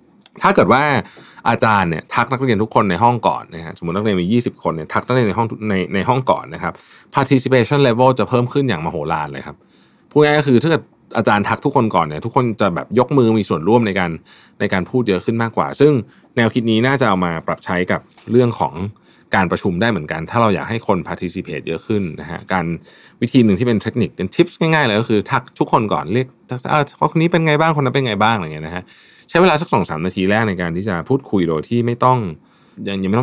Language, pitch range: Thai, 90-125 Hz